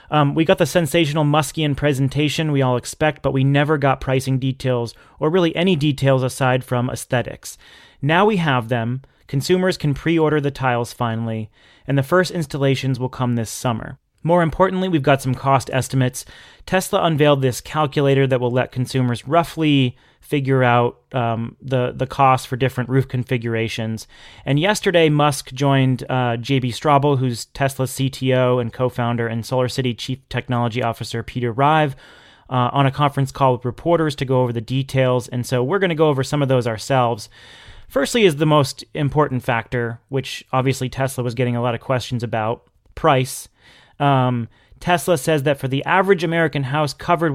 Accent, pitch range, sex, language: American, 125-150 Hz, male, English